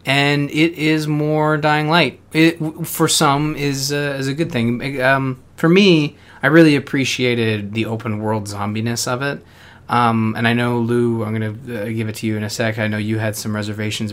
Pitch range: 110-135 Hz